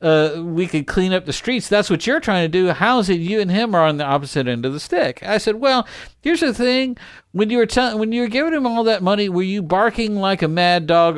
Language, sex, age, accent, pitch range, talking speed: English, male, 50-69, American, 145-210 Hz, 265 wpm